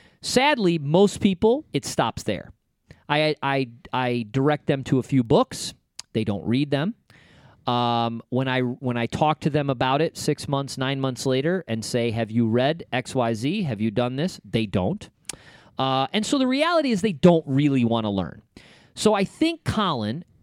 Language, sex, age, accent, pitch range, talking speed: English, male, 40-59, American, 130-200 Hz, 180 wpm